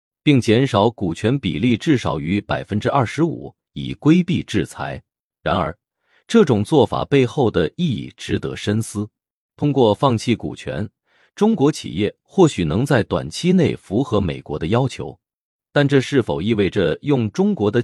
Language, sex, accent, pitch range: Chinese, male, native, 100-140 Hz